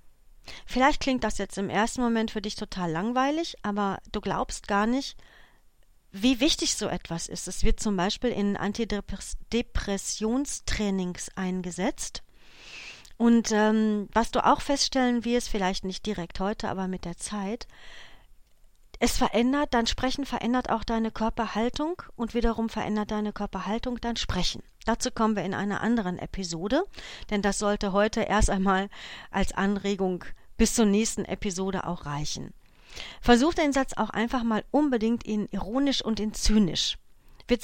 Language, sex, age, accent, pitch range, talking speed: German, female, 40-59, German, 200-250 Hz, 150 wpm